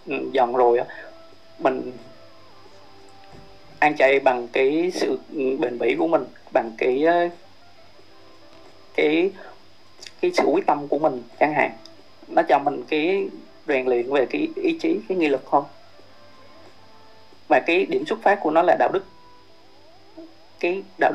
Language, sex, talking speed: Vietnamese, male, 135 wpm